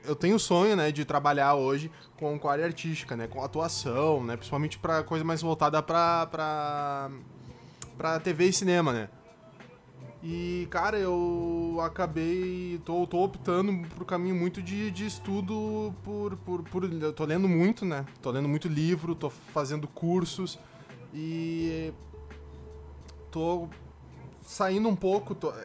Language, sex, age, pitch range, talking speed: Portuguese, male, 20-39, 140-180 Hz, 145 wpm